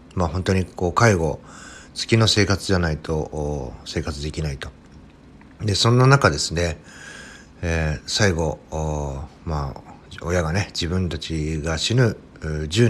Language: Japanese